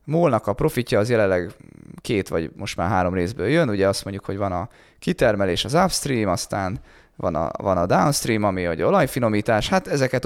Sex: male